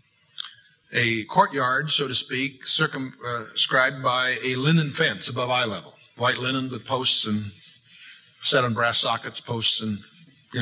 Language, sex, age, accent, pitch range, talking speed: English, male, 50-69, American, 115-150 Hz, 145 wpm